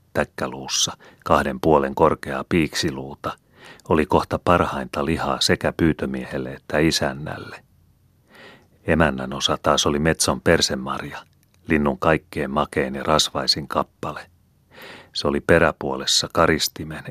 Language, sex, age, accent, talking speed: Finnish, male, 40-59, native, 100 wpm